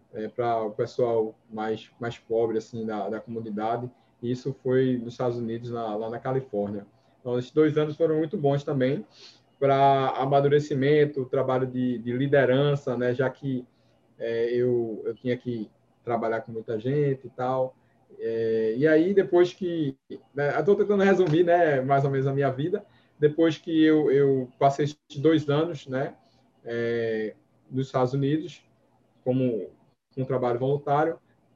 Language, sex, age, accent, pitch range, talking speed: Portuguese, male, 20-39, Brazilian, 120-145 Hz, 145 wpm